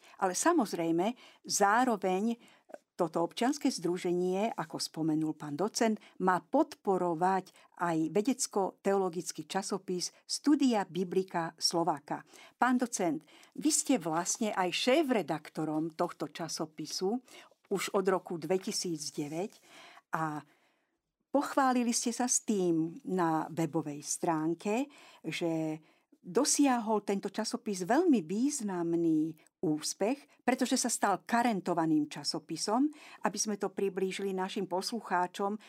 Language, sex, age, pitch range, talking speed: Slovak, female, 50-69, 175-245 Hz, 100 wpm